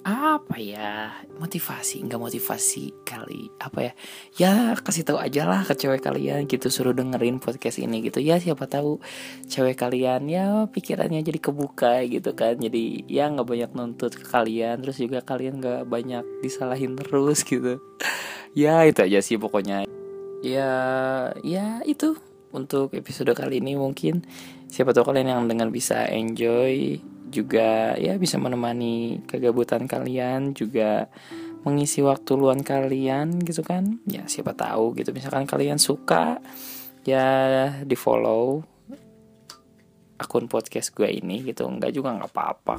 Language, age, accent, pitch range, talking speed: Indonesian, 20-39, native, 115-155 Hz, 140 wpm